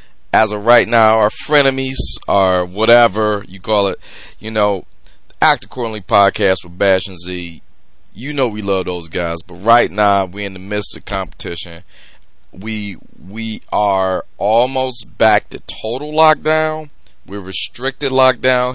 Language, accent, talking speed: English, American, 150 wpm